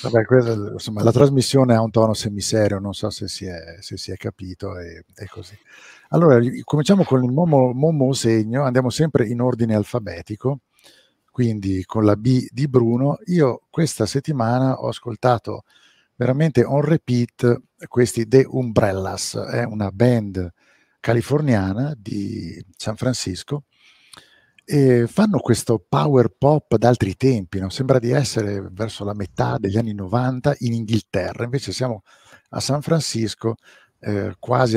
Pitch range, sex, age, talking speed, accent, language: 100-130 Hz, male, 50-69, 145 wpm, native, Italian